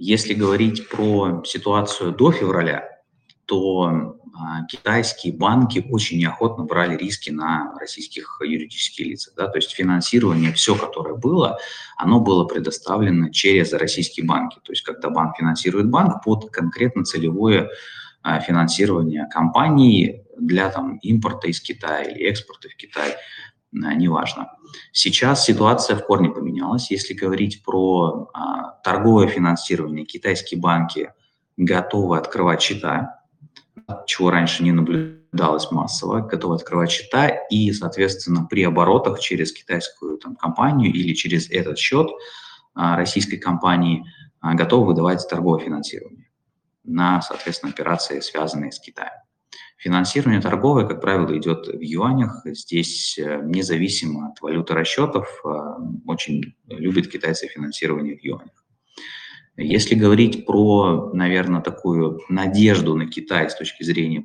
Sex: male